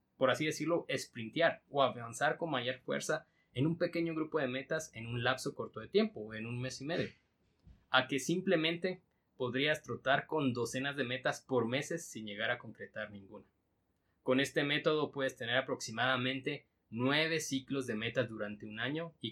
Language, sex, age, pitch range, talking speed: Spanish, male, 20-39, 115-150 Hz, 175 wpm